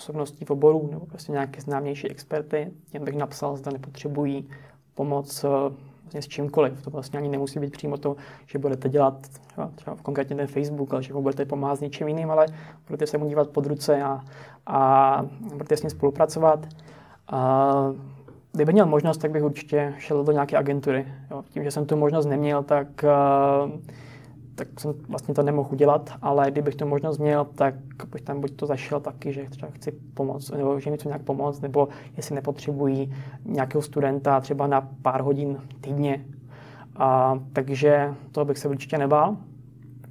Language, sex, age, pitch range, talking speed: Czech, male, 20-39, 135-150 Hz, 170 wpm